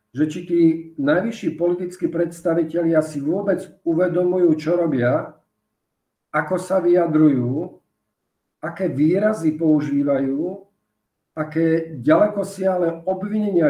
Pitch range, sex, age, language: 150-180 Hz, male, 50-69, Slovak